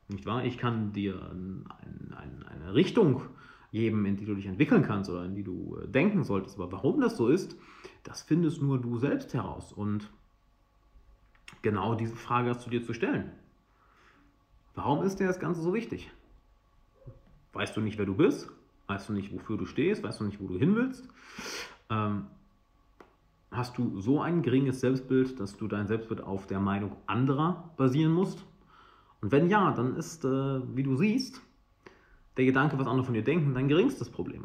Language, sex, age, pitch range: German, male, 40-59, 100-140 Hz